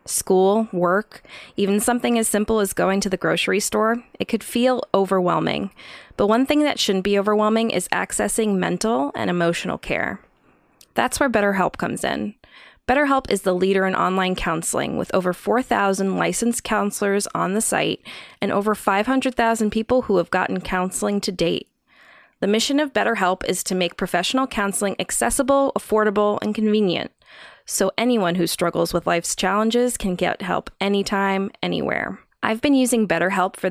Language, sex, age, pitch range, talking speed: English, female, 20-39, 185-235 Hz, 160 wpm